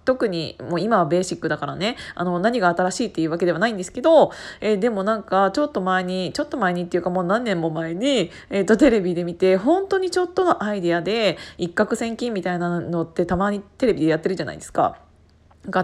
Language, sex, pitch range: Japanese, female, 175-270 Hz